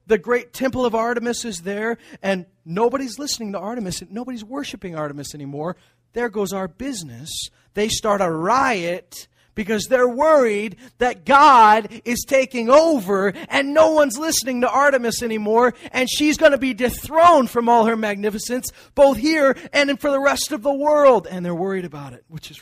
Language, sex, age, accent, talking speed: English, male, 30-49, American, 175 wpm